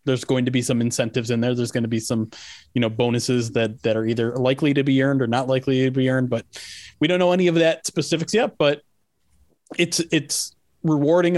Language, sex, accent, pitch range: English, male, American, 125-155 Hz